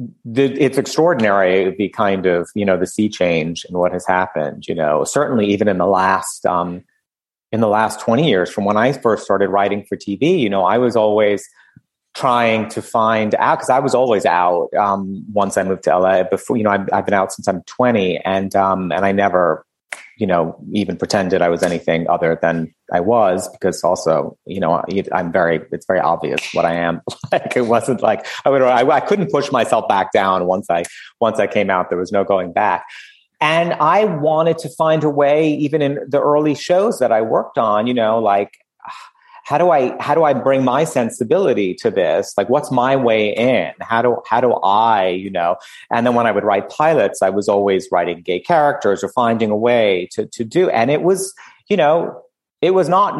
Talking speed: 210 wpm